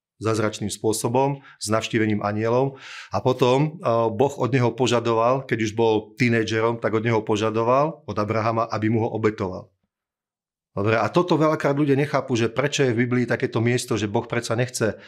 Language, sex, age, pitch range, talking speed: Slovak, male, 30-49, 110-130 Hz, 165 wpm